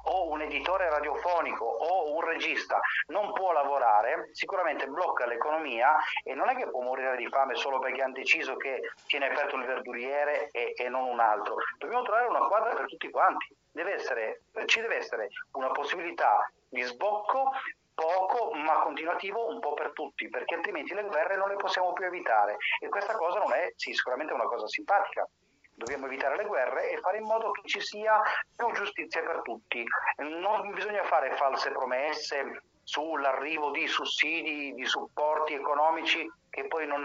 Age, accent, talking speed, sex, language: 40-59, native, 170 wpm, male, Italian